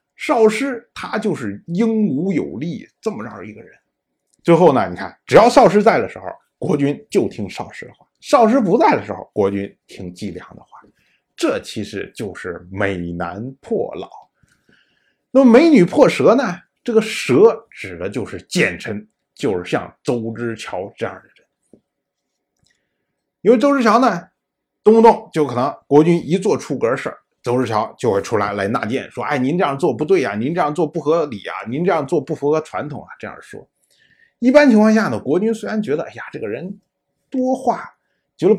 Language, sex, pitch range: Chinese, male, 150-235 Hz